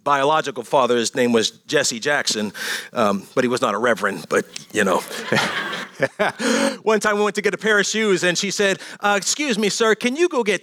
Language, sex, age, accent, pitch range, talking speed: English, male, 30-49, American, 160-215 Hz, 215 wpm